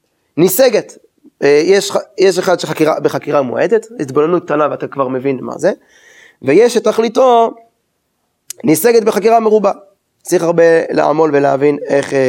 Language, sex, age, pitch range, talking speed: Hebrew, male, 20-39, 150-205 Hz, 115 wpm